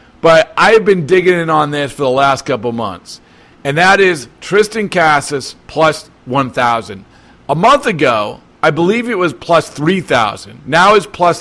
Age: 40-59